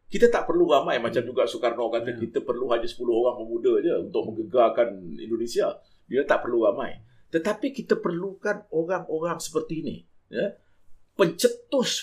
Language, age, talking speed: Malay, 50-69, 150 wpm